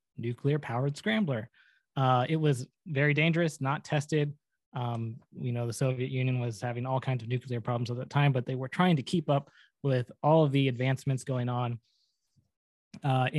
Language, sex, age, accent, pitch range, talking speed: English, male, 20-39, American, 120-140 Hz, 180 wpm